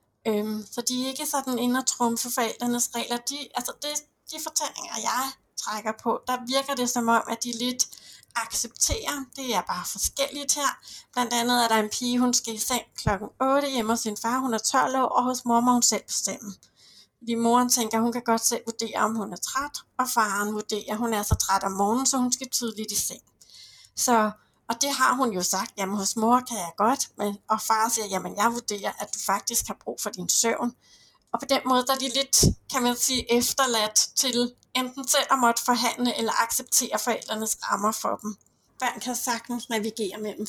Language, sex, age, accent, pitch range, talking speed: Danish, female, 60-79, native, 215-250 Hz, 210 wpm